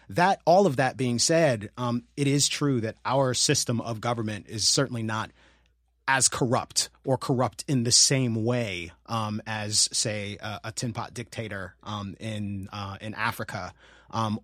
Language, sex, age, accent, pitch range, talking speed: English, male, 30-49, American, 105-125 Hz, 165 wpm